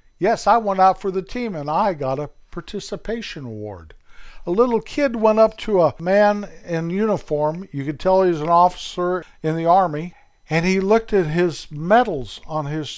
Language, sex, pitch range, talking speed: English, male, 125-170 Hz, 185 wpm